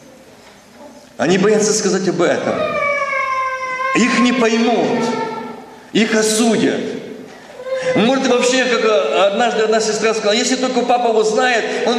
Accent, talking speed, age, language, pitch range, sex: native, 115 wpm, 40-59, Russian, 185-265 Hz, male